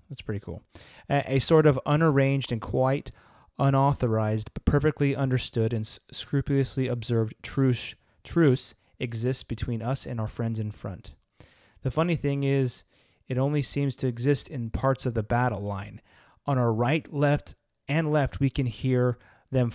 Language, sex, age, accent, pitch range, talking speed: English, male, 20-39, American, 115-140 Hz, 160 wpm